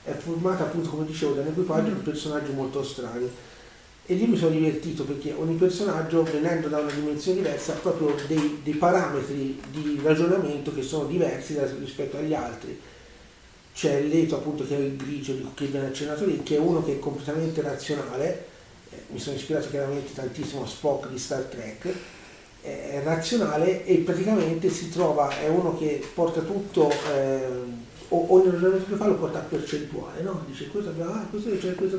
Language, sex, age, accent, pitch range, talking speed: Italian, male, 40-59, native, 145-185 Hz, 180 wpm